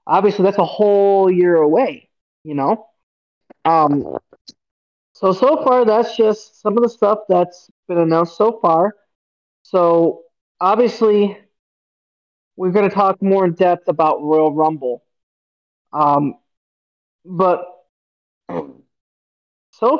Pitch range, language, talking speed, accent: 155-210 Hz, English, 115 wpm, American